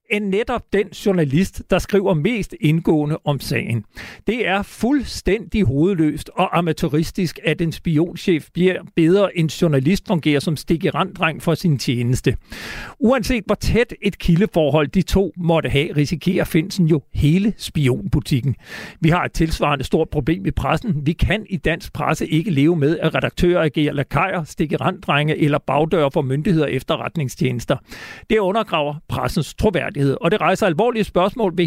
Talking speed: 150 wpm